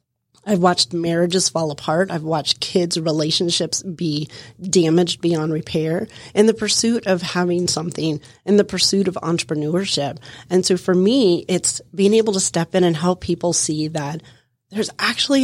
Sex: female